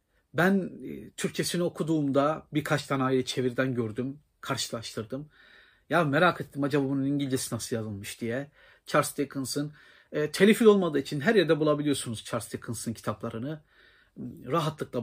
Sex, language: male, Turkish